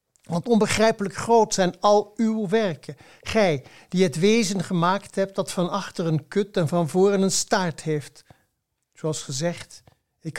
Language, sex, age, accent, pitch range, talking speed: Dutch, male, 60-79, Dutch, 155-195 Hz, 155 wpm